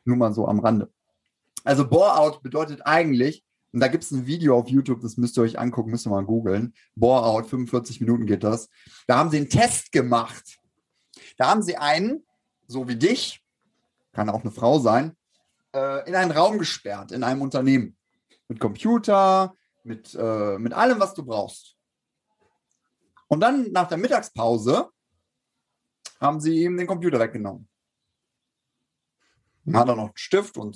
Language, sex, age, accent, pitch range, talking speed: German, male, 30-49, German, 120-165 Hz, 160 wpm